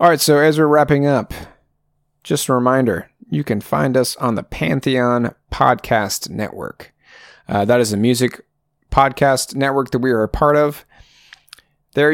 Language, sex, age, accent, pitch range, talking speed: English, male, 30-49, American, 110-140 Hz, 165 wpm